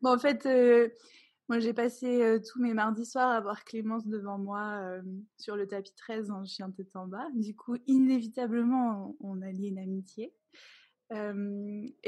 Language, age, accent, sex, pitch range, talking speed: French, 20-39, French, female, 205-245 Hz, 180 wpm